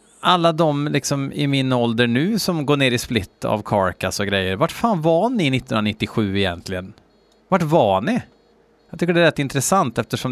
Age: 30-49